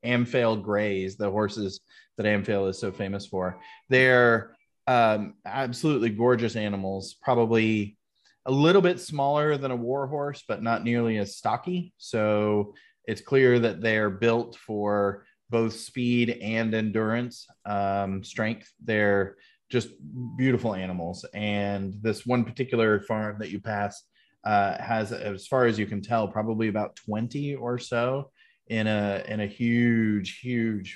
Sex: male